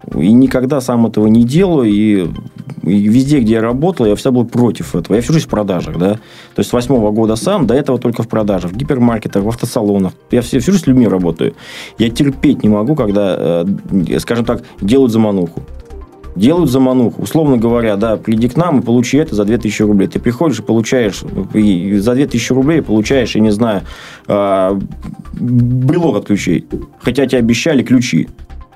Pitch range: 100-130 Hz